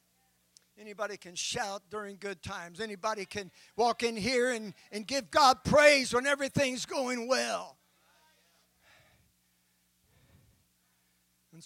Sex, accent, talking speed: male, American, 110 wpm